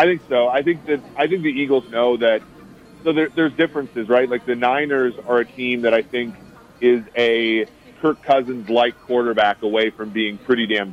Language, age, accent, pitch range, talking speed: English, 30-49, American, 110-125 Hz, 200 wpm